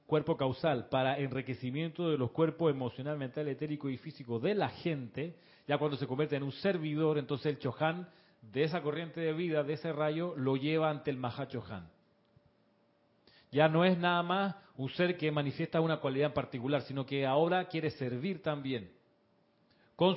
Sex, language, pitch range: male, Spanish, 130-165 Hz